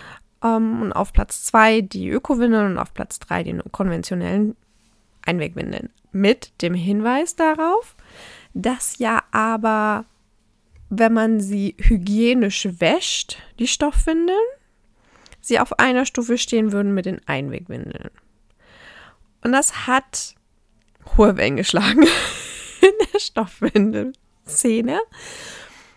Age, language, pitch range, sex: 20-39, German, 180-235 Hz, female